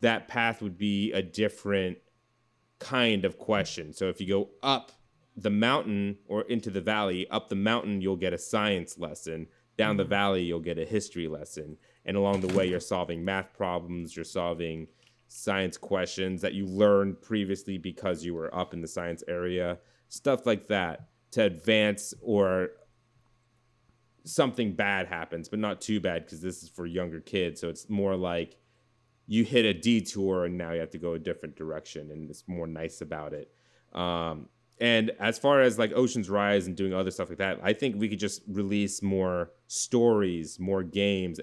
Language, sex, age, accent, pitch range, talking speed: English, male, 30-49, American, 90-110 Hz, 185 wpm